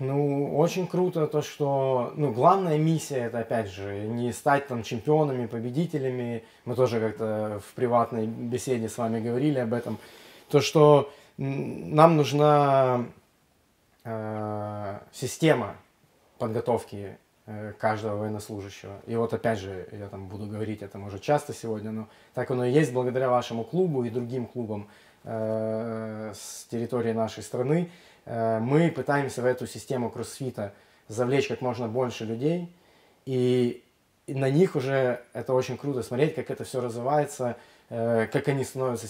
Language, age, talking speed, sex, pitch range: Russian, 20-39, 135 wpm, male, 110-135 Hz